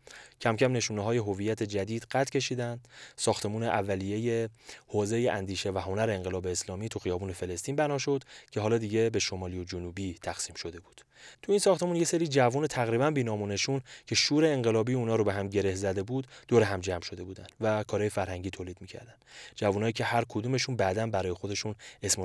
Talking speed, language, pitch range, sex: 185 wpm, English, 100-130 Hz, male